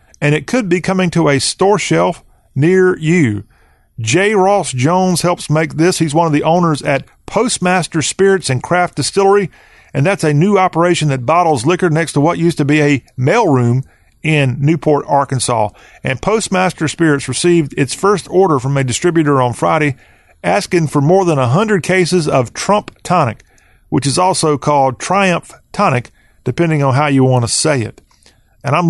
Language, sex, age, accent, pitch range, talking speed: English, male, 40-59, American, 135-175 Hz, 175 wpm